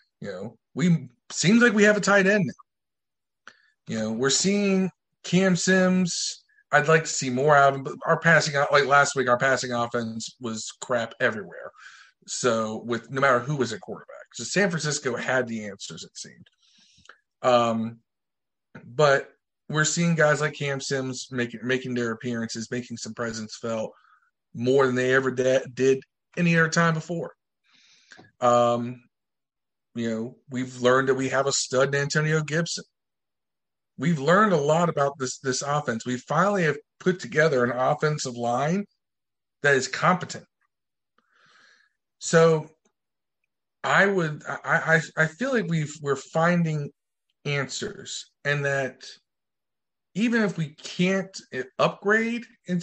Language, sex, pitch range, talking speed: English, male, 125-170 Hz, 150 wpm